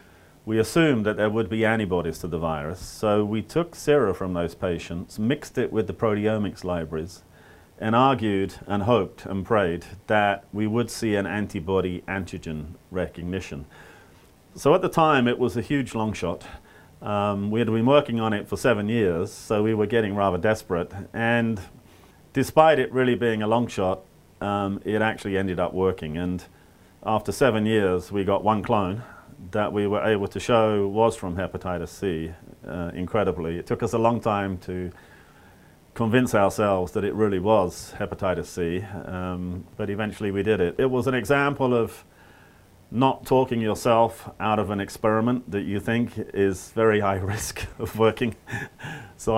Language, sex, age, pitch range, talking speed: English, male, 40-59, 90-115 Hz, 170 wpm